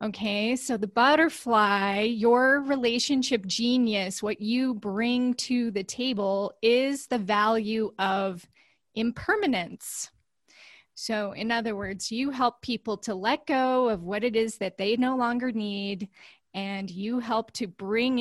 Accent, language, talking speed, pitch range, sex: American, English, 140 wpm, 205-245 Hz, female